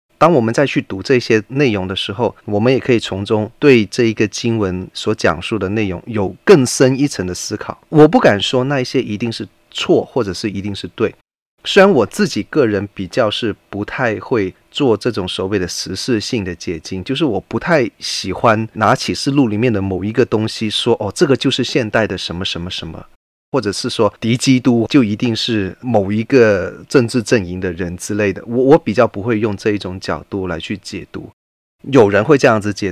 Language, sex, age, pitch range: Chinese, male, 30-49, 100-130 Hz